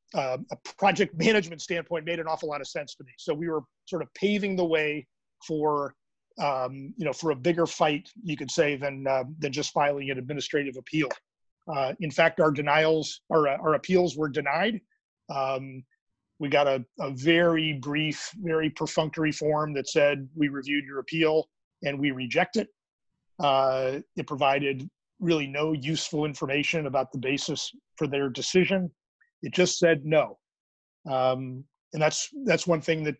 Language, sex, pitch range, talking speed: English, male, 140-165 Hz, 170 wpm